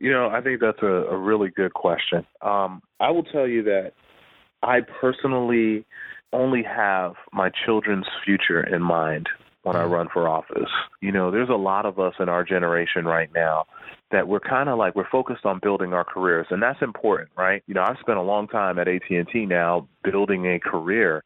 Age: 30-49